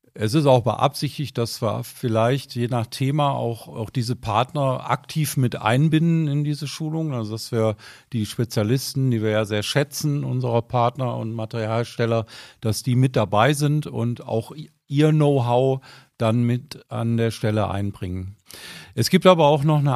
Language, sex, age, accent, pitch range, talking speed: German, male, 50-69, German, 120-145 Hz, 165 wpm